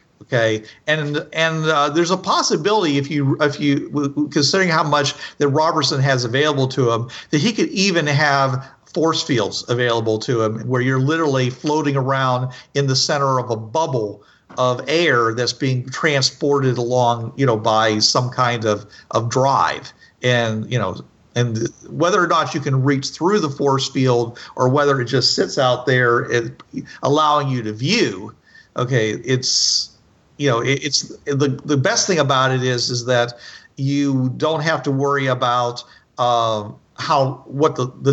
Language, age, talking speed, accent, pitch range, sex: English, 50-69, 165 wpm, American, 120-145 Hz, male